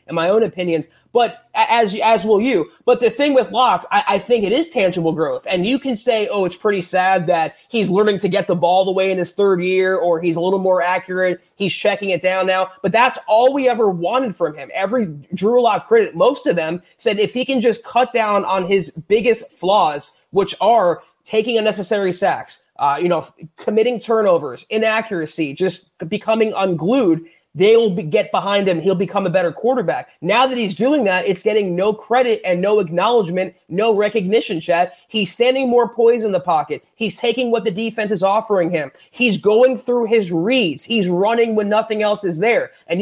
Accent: American